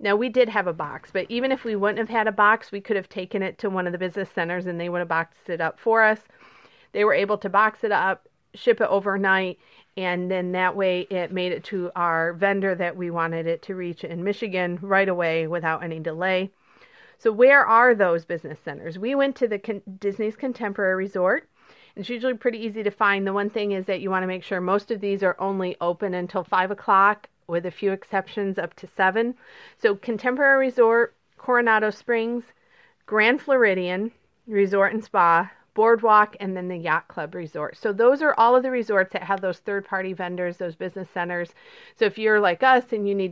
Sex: female